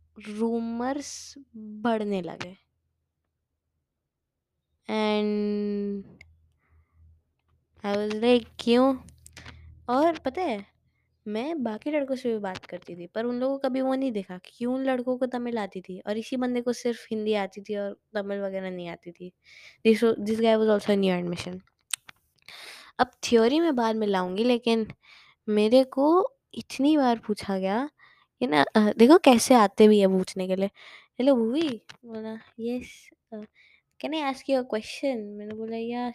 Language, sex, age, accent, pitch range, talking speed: English, female, 20-39, Indian, 195-255 Hz, 90 wpm